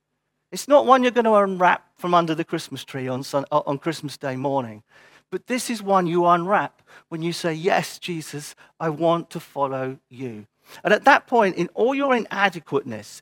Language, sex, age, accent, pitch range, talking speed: English, male, 50-69, British, 130-185 Hz, 190 wpm